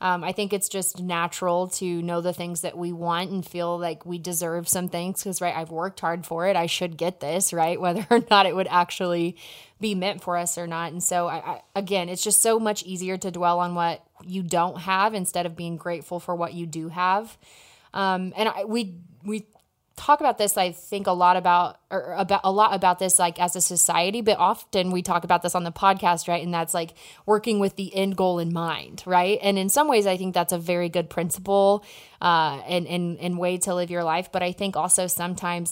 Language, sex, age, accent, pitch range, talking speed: English, female, 20-39, American, 170-190 Hz, 225 wpm